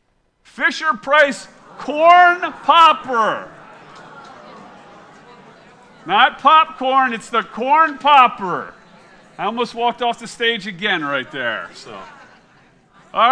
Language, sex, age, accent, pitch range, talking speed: English, male, 50-69, American, 230-300 Hz, 90 wpm